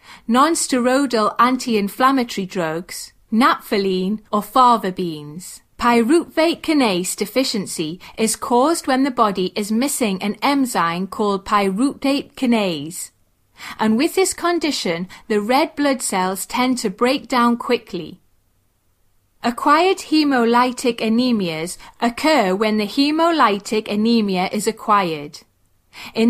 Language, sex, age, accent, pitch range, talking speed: English, female, 30-49, British, 200-265 Hz, 105 wpm